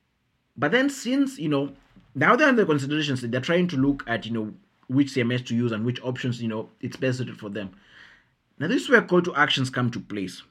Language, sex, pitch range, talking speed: English, male, 125-160 Hz, 235 wpm